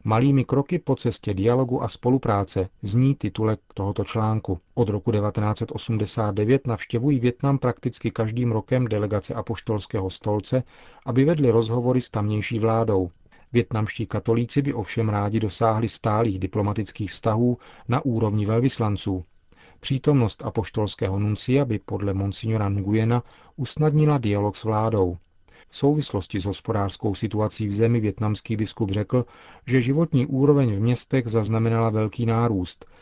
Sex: male